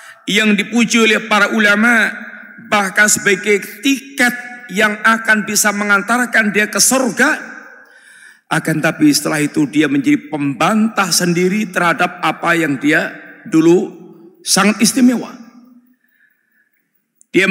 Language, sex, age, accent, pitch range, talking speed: Indonesian, male, 50-69, native, 190-235 Hz, 105 wpm